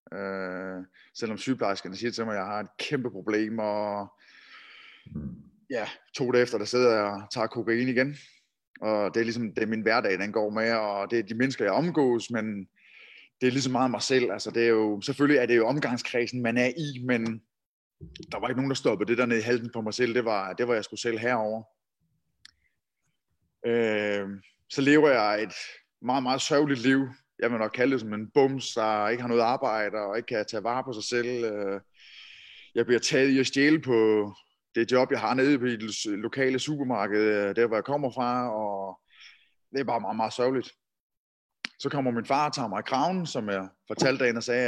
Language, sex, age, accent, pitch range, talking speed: Danish, male, 20-39, native, 110-130 Hz, 210 wpm